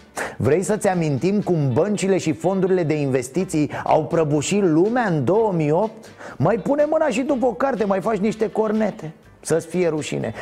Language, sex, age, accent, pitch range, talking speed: Romanian, male, 30-49, native, 160-220 Hz, 160 wpm